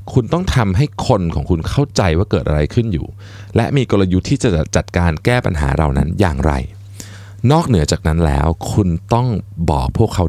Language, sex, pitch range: Thai, male, 80-105 Hz